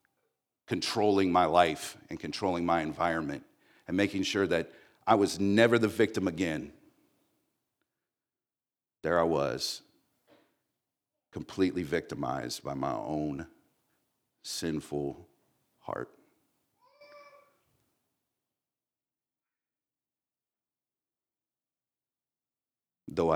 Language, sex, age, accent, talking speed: English, male, 50-69, American, 70 wpm